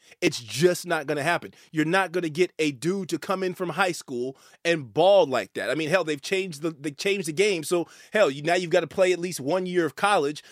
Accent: American